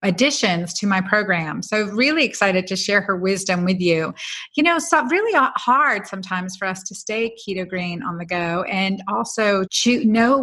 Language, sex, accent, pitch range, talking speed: English, female, American, 185-230 Hz, 185 wpm